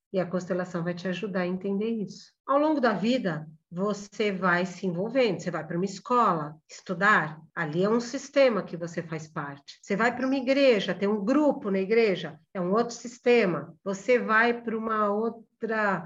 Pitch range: 185-245 Hz